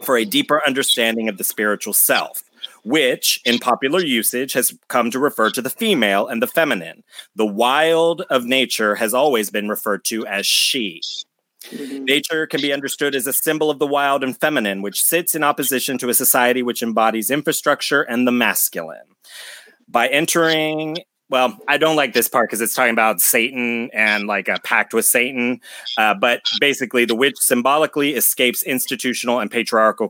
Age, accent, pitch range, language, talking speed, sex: 30-49, American, 105-140 Hz, English, 175 wpm, male